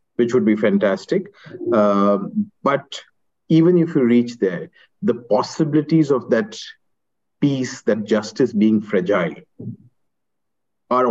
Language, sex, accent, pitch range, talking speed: English, male, Indian, 110-180 Hz, 115 wpm